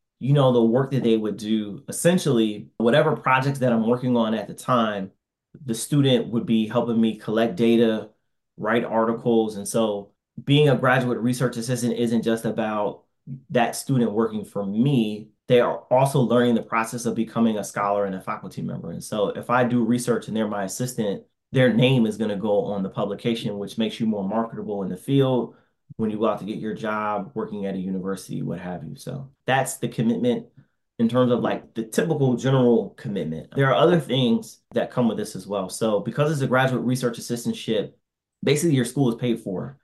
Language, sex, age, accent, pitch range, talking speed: English, male, 20-39, American, 110-125 Hz, 200 wpm